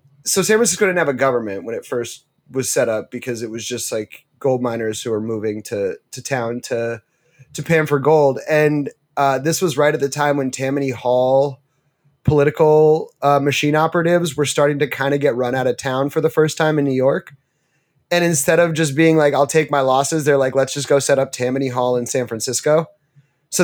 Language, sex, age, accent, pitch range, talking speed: English, male, 30-49, American, 130-155 Hz, 220 wpm